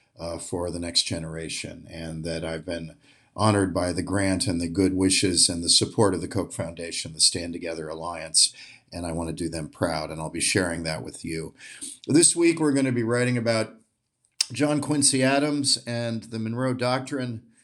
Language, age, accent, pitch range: English, 50-69, American, 90-120 Hz